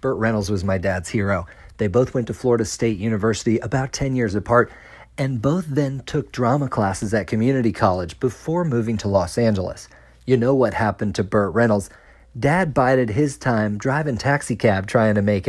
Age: 40-59